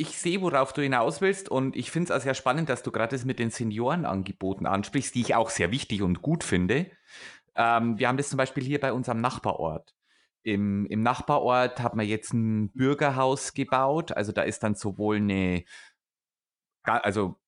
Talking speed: 190 wpm